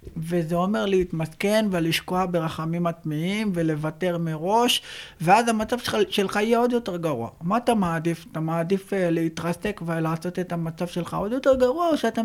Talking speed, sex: 145 wpm, male